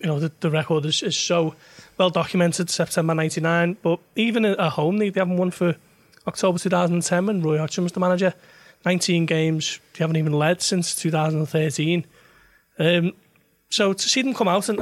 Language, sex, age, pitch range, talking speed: English, male, 30-49, 155-180 Hz, 180 wpm